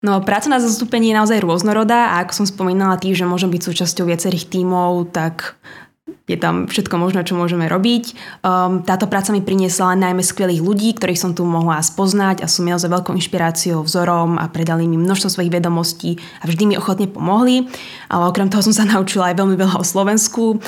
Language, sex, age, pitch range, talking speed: Slovak, female, 20-39, 175-195 Hz, 195 wpm